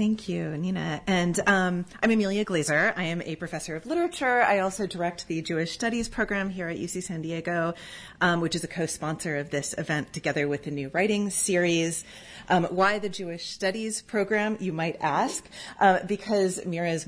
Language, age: English, 30-49